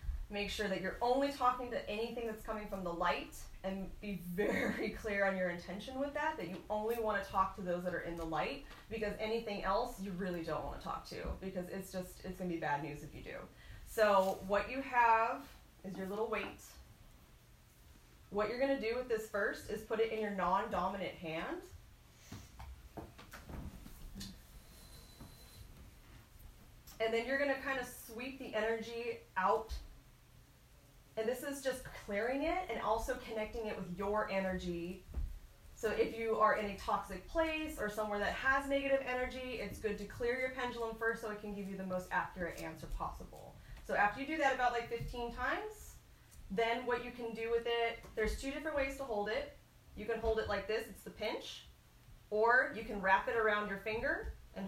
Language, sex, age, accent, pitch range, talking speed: English, female, 20-39, American, 190-240 Hz, 195 wpm